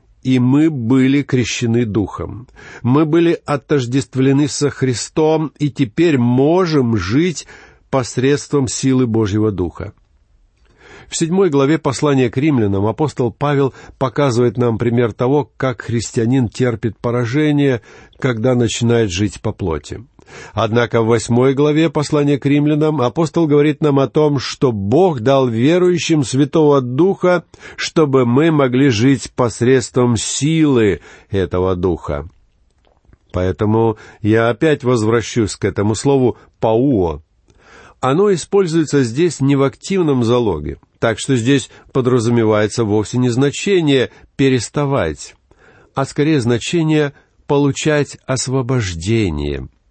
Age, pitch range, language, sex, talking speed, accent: 50-69, 115-145 Hz, Russian, male, 110 wpm, native